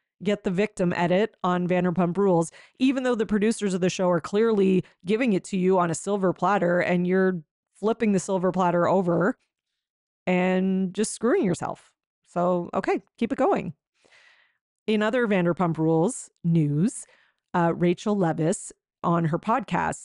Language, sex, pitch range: English, female, 170-205 Hz